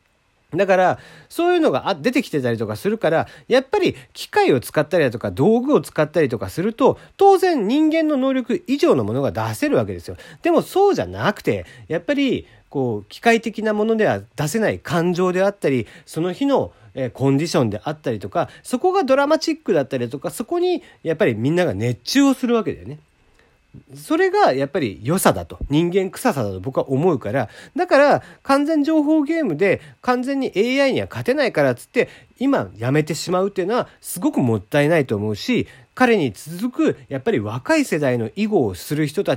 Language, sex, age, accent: Japanese, male, 40-59, native